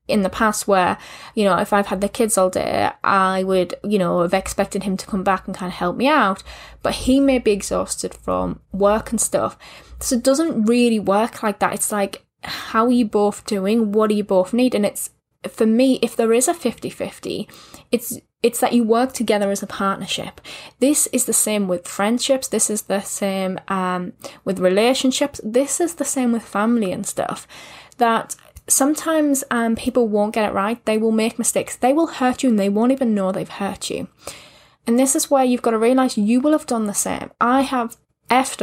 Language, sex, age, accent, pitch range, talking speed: English, female, 10-29, British, 200-250 Hz, 215 wpm